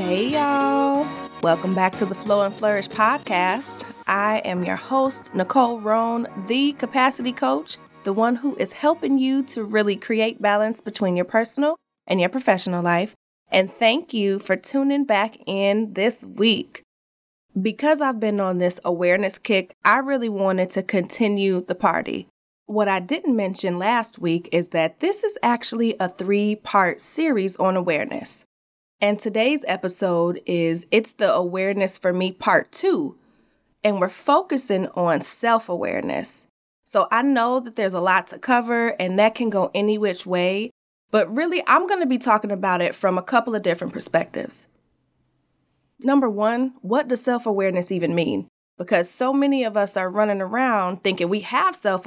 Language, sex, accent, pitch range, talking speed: English, female, American, 185-245 Hz, 165 wpm